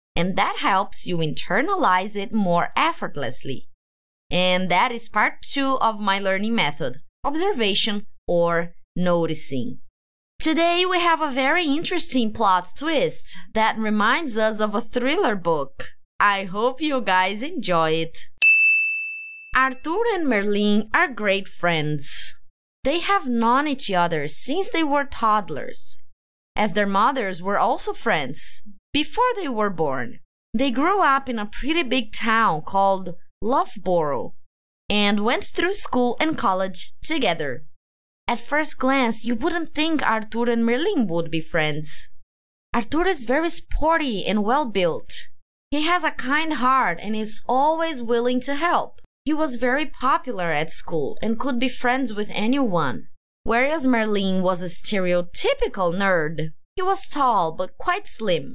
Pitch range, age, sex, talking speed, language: 195-295 Hz, 20-39, female, 140 wpm, English